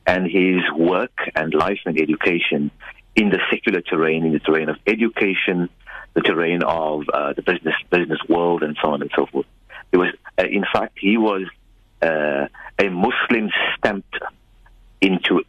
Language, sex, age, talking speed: English, male, 50-69, 165 wpm